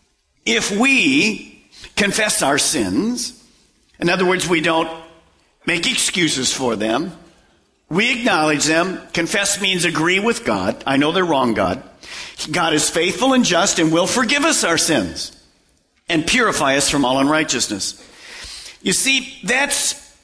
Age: 50-69